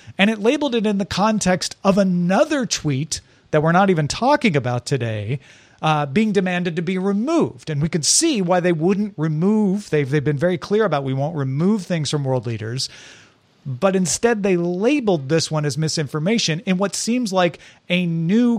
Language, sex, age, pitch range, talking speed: English, male, 40-59, 145-200 Hz, 185 wpm